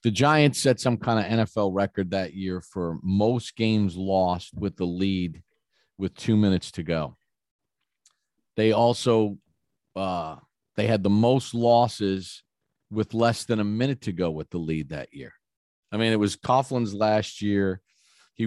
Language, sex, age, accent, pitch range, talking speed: English, male, 40-59, American, 95-125 Hz, 160 wpm